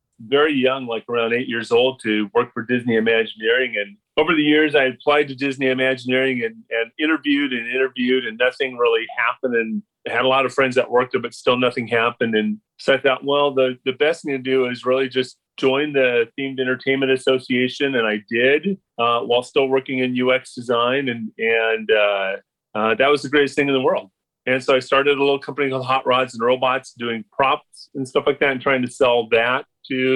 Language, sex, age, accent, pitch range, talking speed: English, male, 30-49, American, 120-140 Hz, 215 wpm